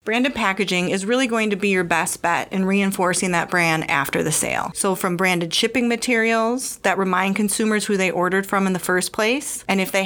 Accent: American